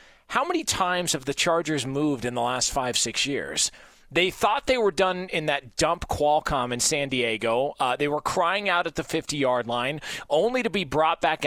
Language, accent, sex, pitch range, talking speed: English, American, male, 150-195 Hz, 205 wpm